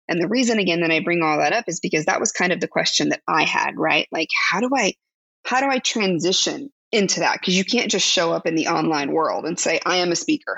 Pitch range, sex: 170-240 Hz, female